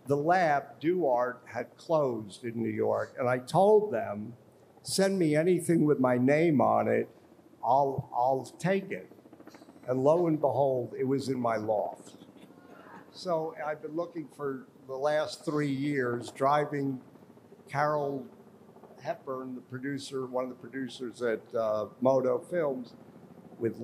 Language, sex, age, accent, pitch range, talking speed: English, male, 50-69, American, 125-165 Hz, 140 wpm